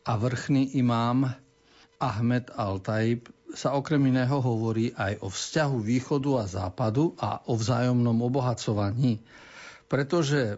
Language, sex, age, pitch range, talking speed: Slovak, male, 50-69, 110-130 Hz, 115 wpm